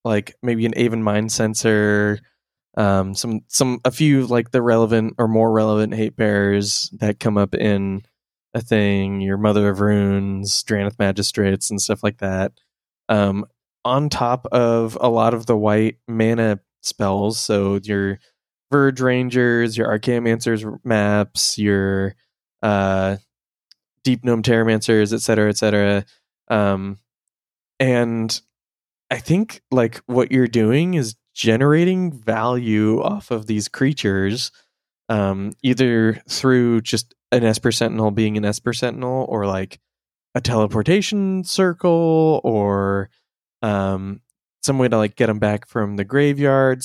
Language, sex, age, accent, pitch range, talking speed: English, male, 20-39, American, 105-125 Hz, 135 wpm